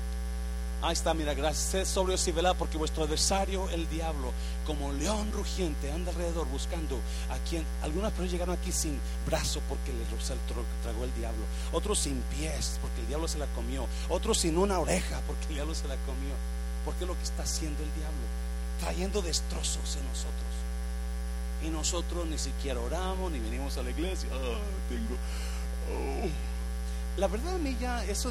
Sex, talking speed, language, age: male, 175 wpm, Spanish, 40-59